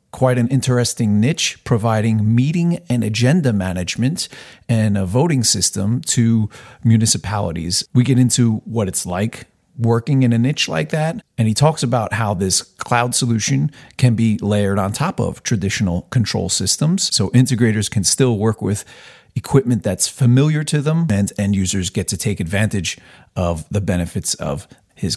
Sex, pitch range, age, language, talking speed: male, 105-125 Hz, 40-59, English, 160 wpm